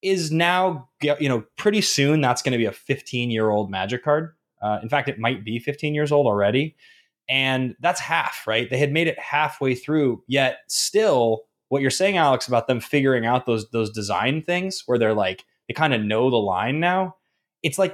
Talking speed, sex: 200 wpm, male